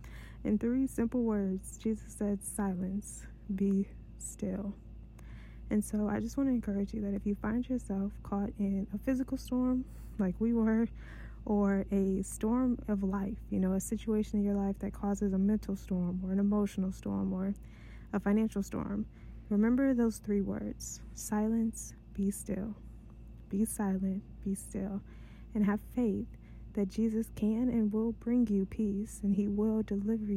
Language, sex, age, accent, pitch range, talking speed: English, female, 20-39, American, 195-220 Hz, 160 wpm